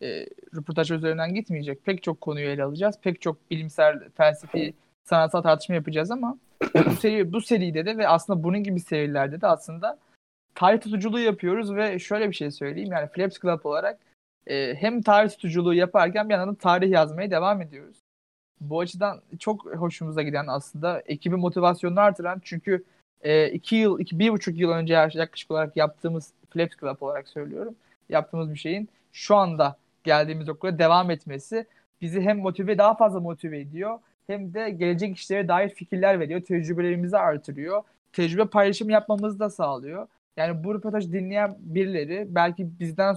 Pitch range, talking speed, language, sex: 160-205 Hz, 155 wpm, Turkish, male